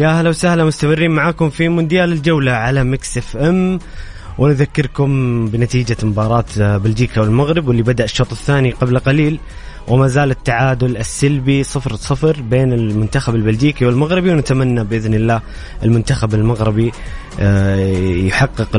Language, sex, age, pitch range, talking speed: English, male, 20-39, 115-150 Hz, 120 wpm